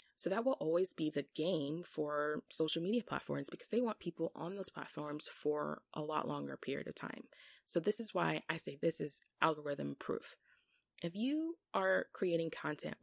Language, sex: English, female